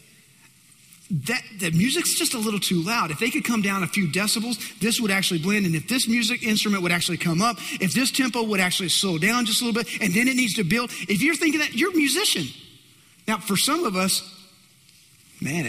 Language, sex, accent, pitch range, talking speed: English, male, American, 160-225 Hz, 225 wpm